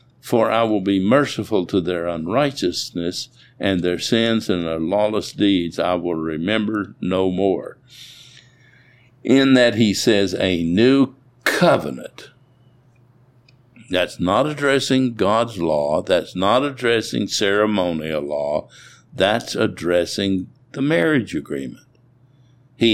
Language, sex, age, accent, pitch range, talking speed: English, male, 60-79, American, 90-125 Hz, 110 wpm